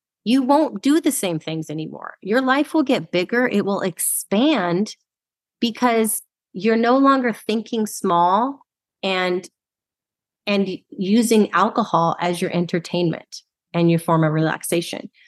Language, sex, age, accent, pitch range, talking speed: English, female, 30-49, American, 175-230 Hz, 130 wpm